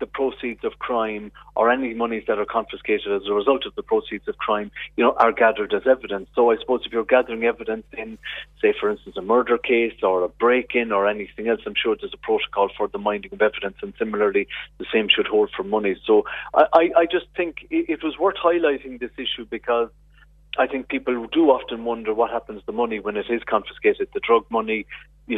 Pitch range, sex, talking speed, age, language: 115-165 Hz, male, 220 wpm, 30-49, English